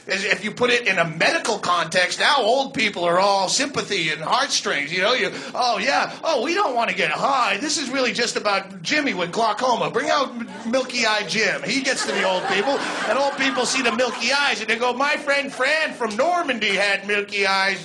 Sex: male